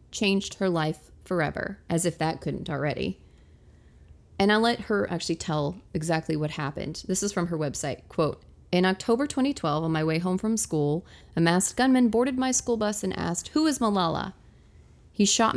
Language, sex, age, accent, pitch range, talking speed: English, female, 30-49, American, 155-215 Hz, 180 wpm